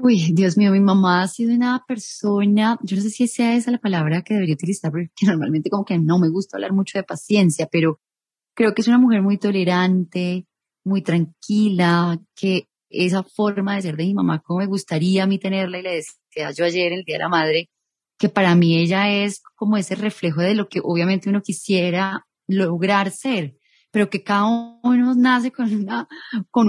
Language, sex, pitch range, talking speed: Spanish, female, 180-225 Hz, 200 wpm